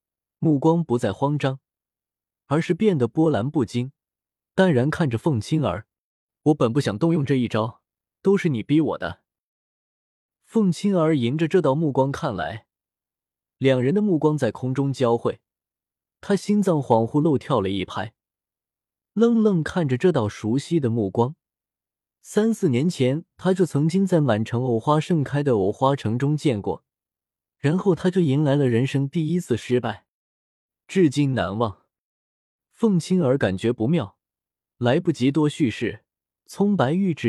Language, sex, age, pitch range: Chinese, male, 20-39, 115-170 Hz